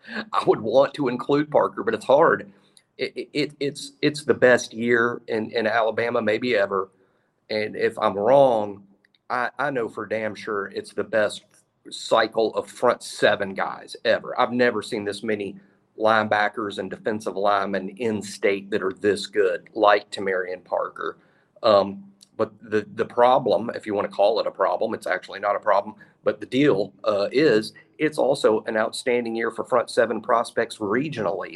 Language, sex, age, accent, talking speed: English, male, 40-59, American, 175 wpm